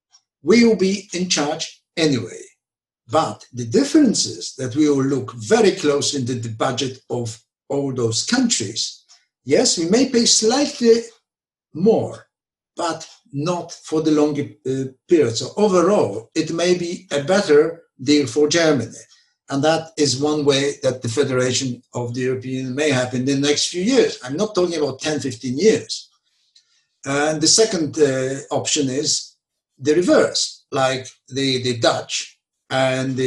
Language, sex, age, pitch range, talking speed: English, male, 60-79, 125-160 Hz, 155 wpm